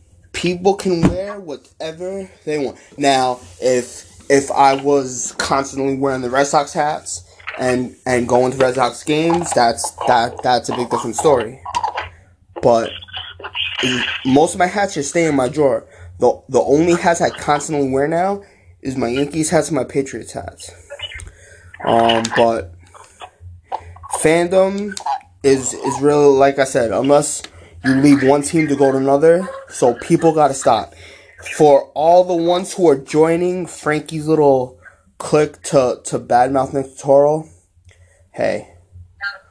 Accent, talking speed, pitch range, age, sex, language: American, 145 wpm, 95-155 Hz, 20-39, male, English